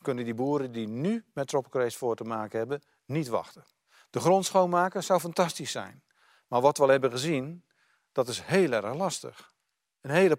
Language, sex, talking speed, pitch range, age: Dutch, male, 185 wpm, 130-170 Hz, 50-69